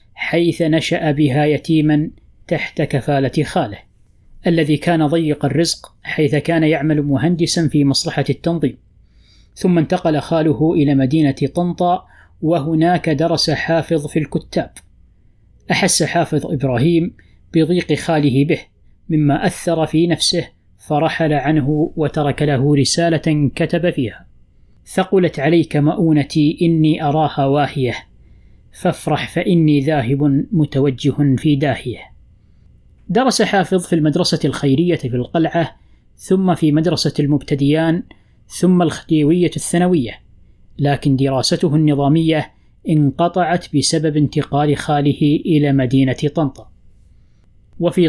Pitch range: 140-170 Hz